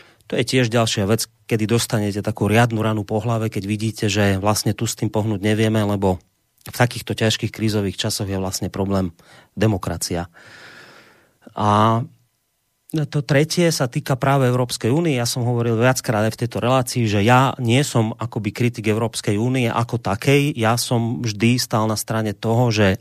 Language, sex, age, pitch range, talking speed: Slovak, male, 30-49, 105-125 Hz, 170 wpm